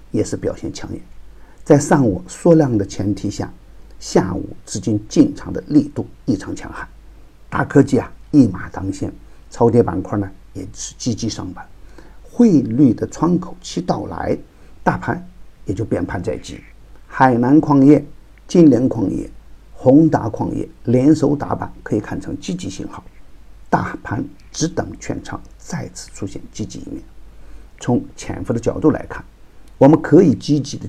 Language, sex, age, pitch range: Chinese, male, 50-69, 100-140 Hz